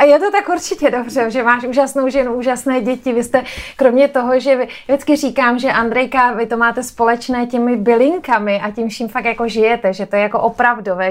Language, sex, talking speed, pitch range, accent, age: Czech, female, 210 wpm, 210-240 Hz, native, 30-49